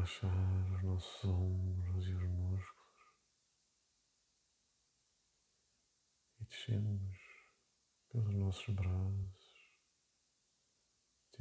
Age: 50-69